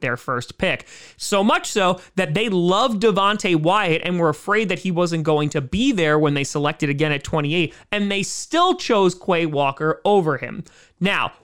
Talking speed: 190 wpm